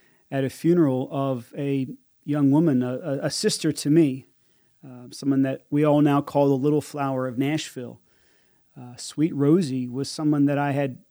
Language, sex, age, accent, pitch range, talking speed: English, male, 30-49, American, 130-155 Hz, 175 wpm